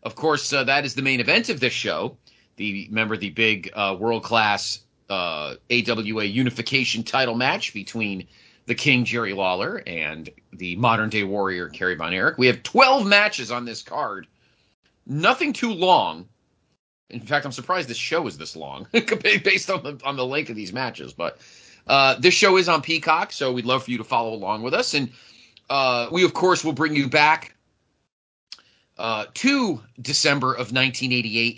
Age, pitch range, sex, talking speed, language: 30-49, 110-155 Hz, male, 175 wpm, English